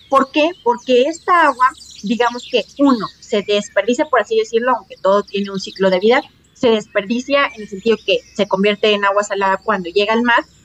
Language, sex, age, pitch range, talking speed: Spanish, female, 30-49, 220-270 Hz, 195 wpm